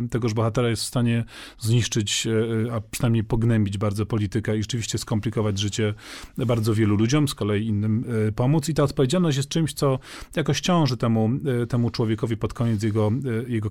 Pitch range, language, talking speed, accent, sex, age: 115-140 Hz, Polish, 160 wpm, native, male, 40-59